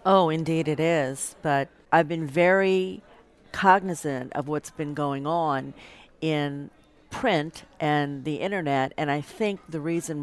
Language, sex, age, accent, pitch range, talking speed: English, female, 50-69, American, 135-165 Hz, 140 wpm